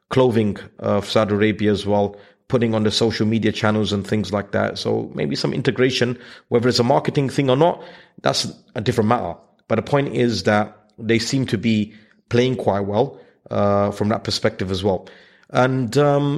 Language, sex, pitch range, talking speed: English, male, 110-135 Hz, 185 wpm